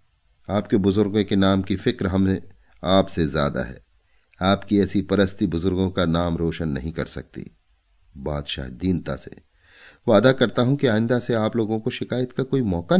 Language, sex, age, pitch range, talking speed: Hindi, male, 40-59, 80-105 Hz, 165 wpm